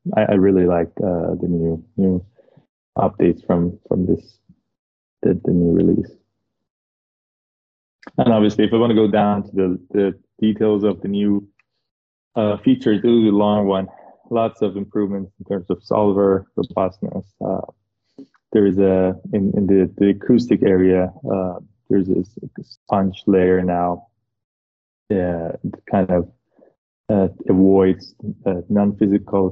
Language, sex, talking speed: English, male, 140 wpm